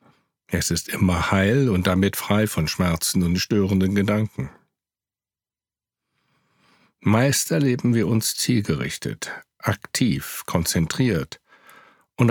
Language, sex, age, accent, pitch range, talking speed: German, male, 60-79, German, 90-120 Hz, 95 wpm